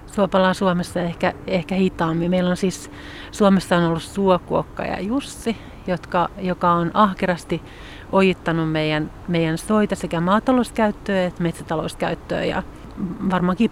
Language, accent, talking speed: Finnish, native, 120 wpm